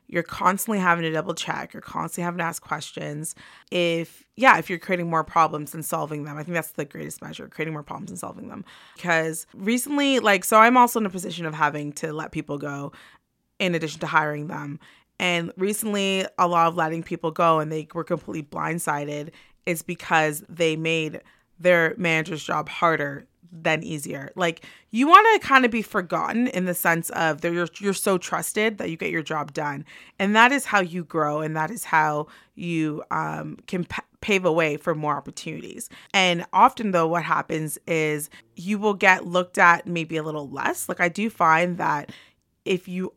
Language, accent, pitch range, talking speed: English, American, 155-195 Hz, 195 wpm